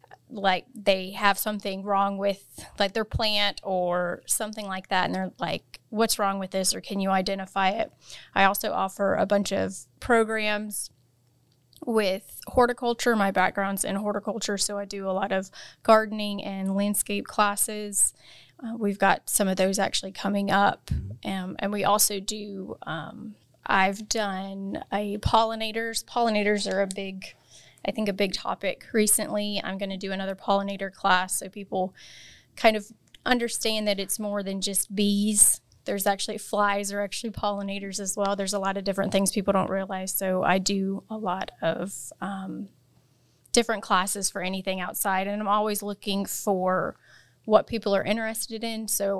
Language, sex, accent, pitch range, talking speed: English, female, American, 190-210 Hz, 165 wpm